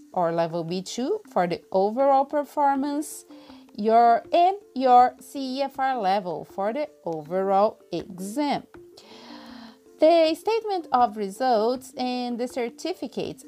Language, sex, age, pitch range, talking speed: English, female, 30-49, 200-290 Hz, 100 wpm